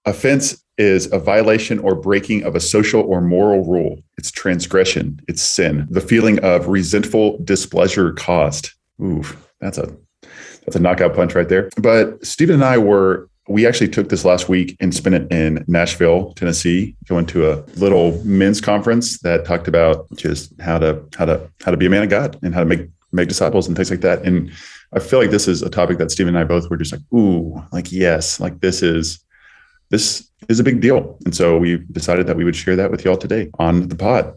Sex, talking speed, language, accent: male, 215 wpm, English, American